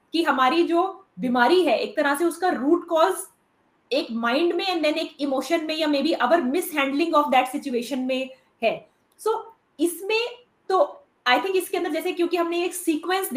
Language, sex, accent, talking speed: Hindi, female, native, 100 wpm